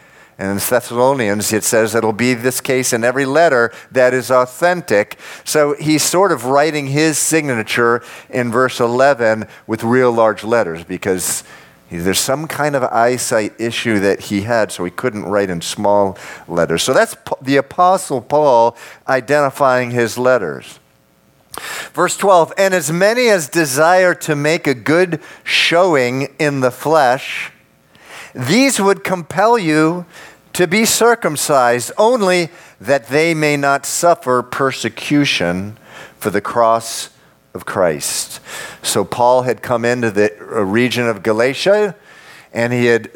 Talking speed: 140 wpm